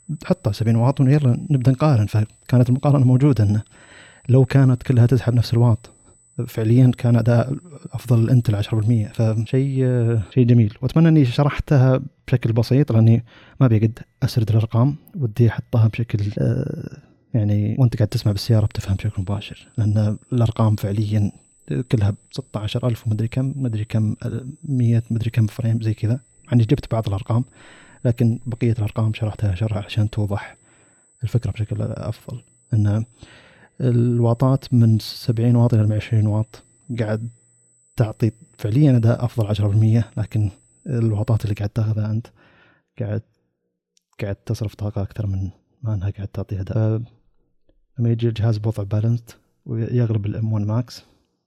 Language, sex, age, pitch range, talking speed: Arabic, male, 30-49, 105-125 Hz, 135 wpm